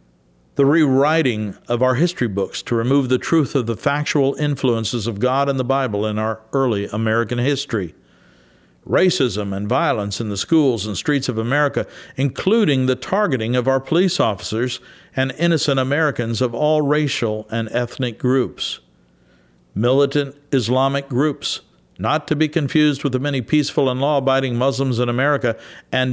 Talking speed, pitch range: 155 wpm, 110-140 Hz